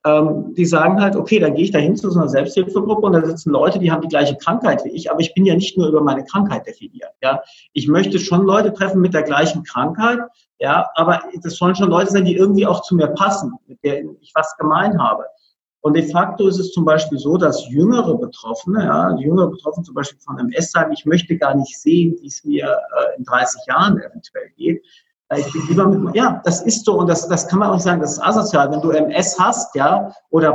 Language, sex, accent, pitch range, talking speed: German, male, German, 155-200 Hz, 230 wpm